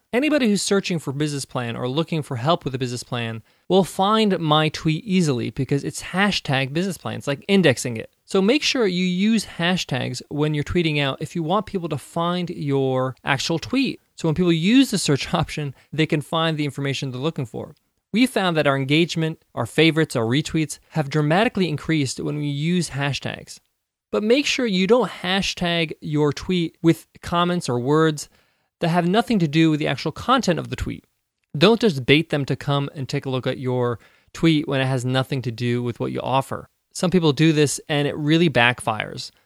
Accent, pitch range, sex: American, 130-175 Hz, male